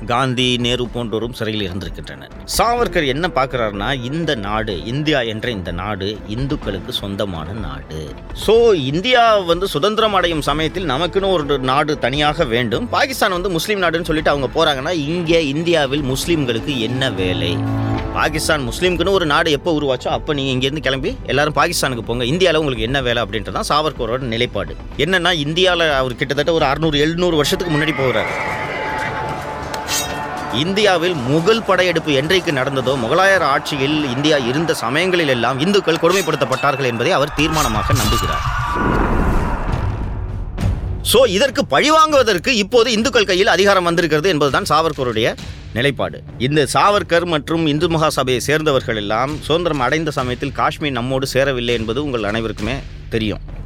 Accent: native